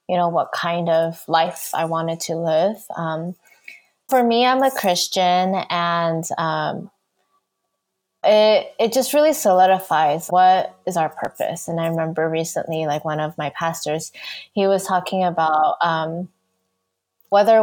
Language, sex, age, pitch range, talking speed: English, female, 20-39, 155-190 Hz, 145 wpm